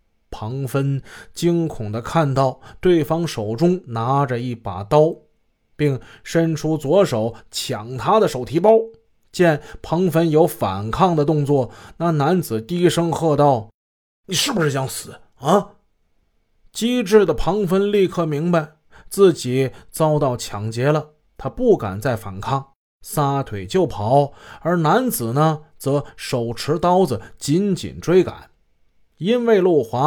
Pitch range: 120-170 Hz